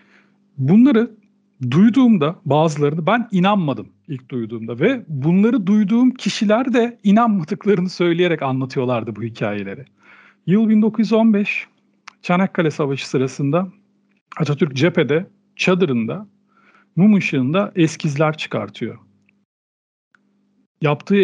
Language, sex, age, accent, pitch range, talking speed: Turkish, male, 40-59, native, 140-205 Hz, 85 wpm